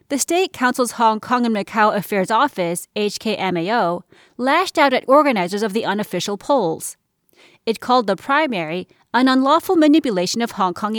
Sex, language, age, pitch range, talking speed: female, English, 30-49, 195-280 Hz, 155 wpm